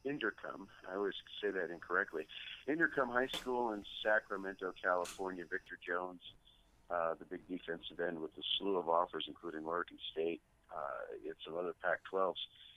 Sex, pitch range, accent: male, 90-120 Hz, American